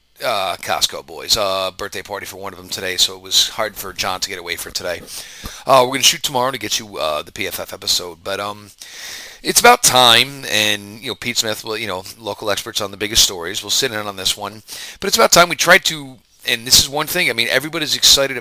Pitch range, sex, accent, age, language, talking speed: 100-125 Hz, male, American, 40-59, English, 250 wpm